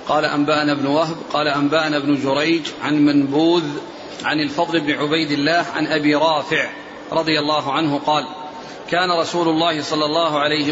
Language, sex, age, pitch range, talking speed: Arabic, male, 40-59, 155-185 Hz, 155 wpm